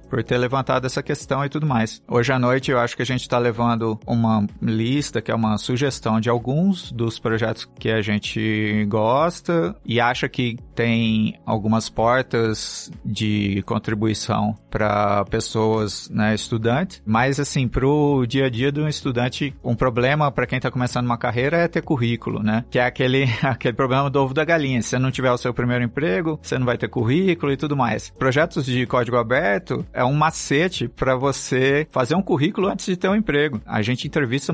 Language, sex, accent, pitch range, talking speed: Portuguese, male, Brazilian, 120-150 Hz, 190 wpm